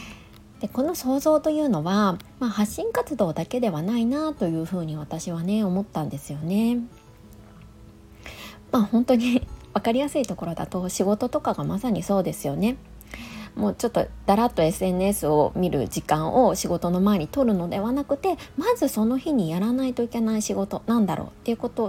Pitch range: 170-270 Hz